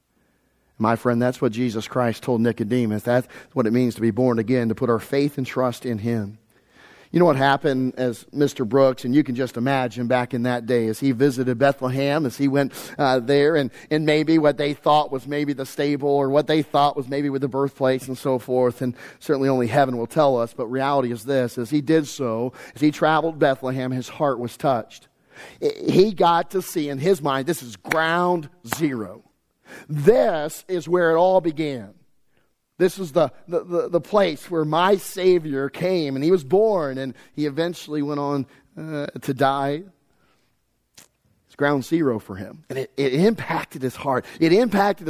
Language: English